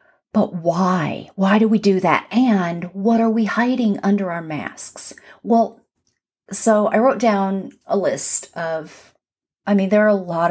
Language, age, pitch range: English, 40-59, 170-215 Hz